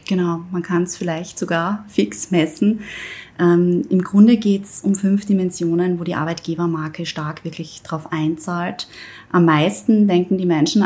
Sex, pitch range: female, 165-190 Hz